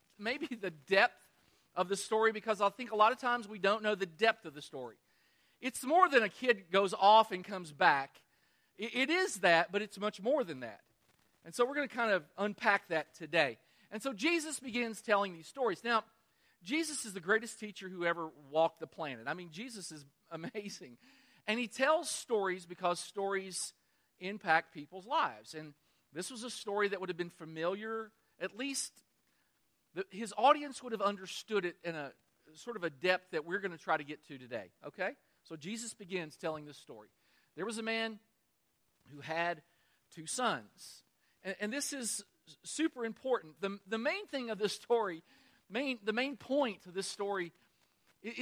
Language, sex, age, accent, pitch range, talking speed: English, male, 40-59, American, 175-235 Hz, 185 wpm